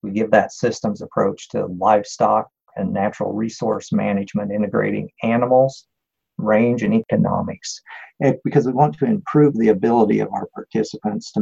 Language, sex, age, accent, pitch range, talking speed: English, male, 50-69, American, 105-135 Hz, 140 wpm